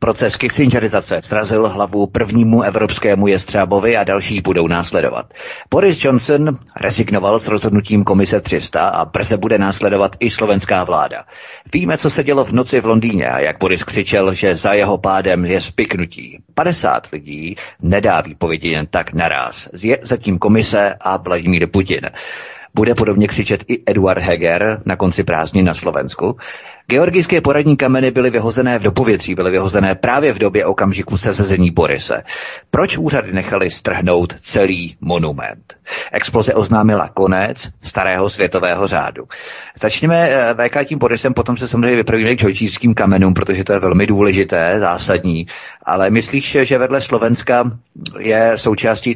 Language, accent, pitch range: Czech, native, 95-115 Hz